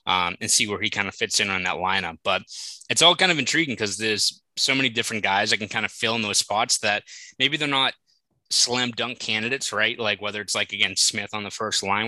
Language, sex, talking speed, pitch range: English, male, 250 wpm, 100-120 Hz